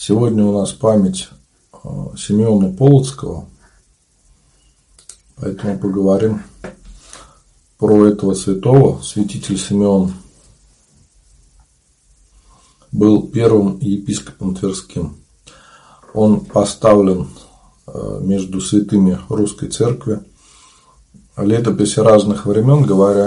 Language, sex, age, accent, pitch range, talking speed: Russian, male, 40-59, native, 95-110 Hz, 70 wpm